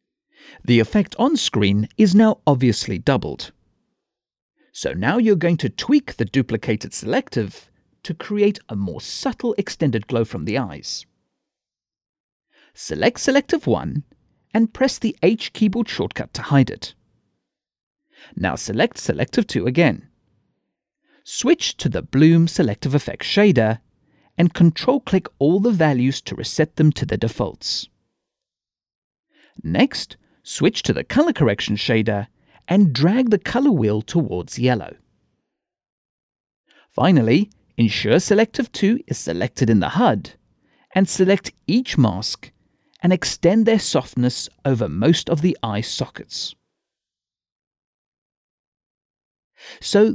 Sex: male